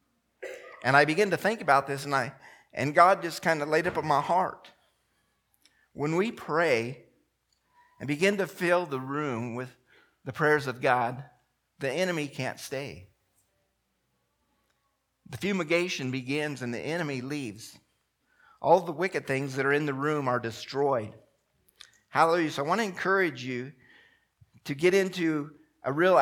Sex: male